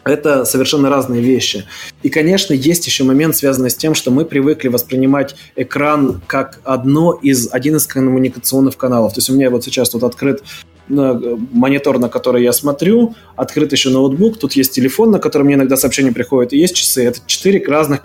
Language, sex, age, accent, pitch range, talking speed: Russian, male, 20-39, native, 120-140 Hz, 185 wpm